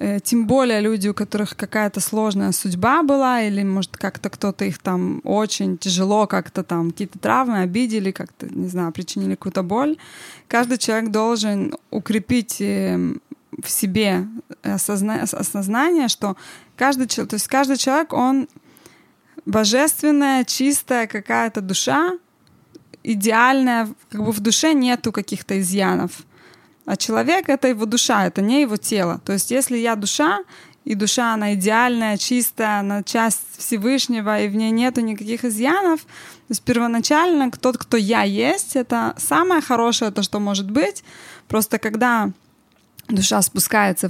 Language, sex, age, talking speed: Russian, female, 20-39, 140 wpm